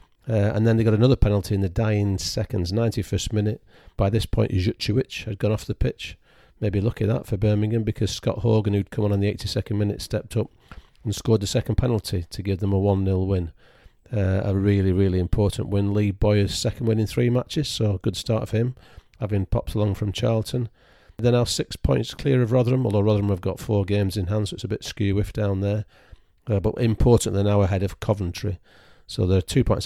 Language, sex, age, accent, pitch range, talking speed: English, male, 40-59, British, 100-115 Hz, 220 wpm